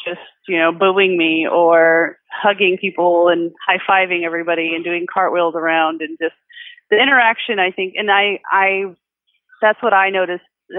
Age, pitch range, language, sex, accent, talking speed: 30-49, 175-220 Hz, English, female, American, 155 wpm